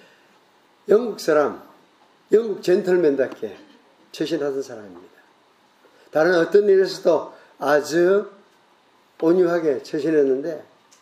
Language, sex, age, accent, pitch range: Korean, male, 50-69, native, 140-215 Hz